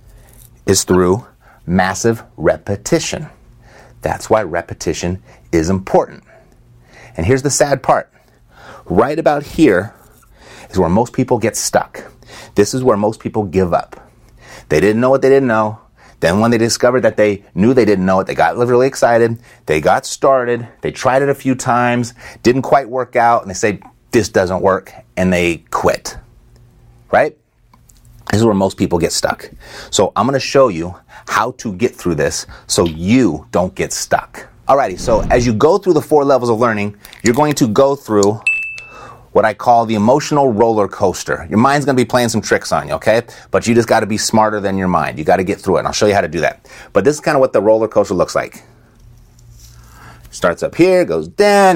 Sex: male